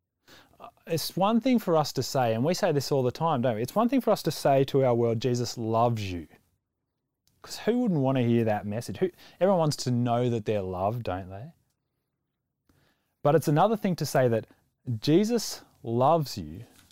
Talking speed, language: 200 wpm, English